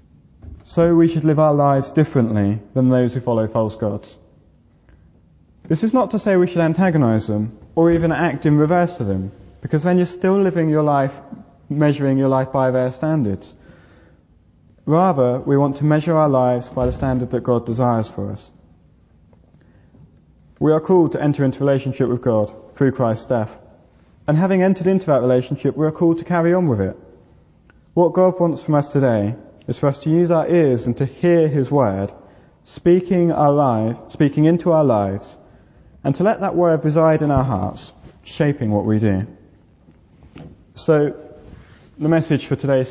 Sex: male